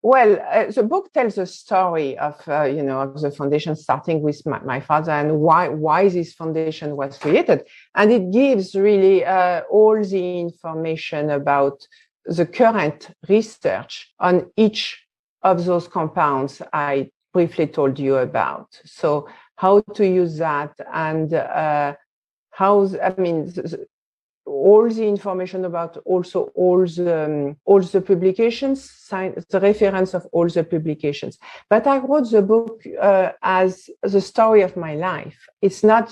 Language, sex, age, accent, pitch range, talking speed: English, female, 50-69, French, 160-210 Hz, 150 wpm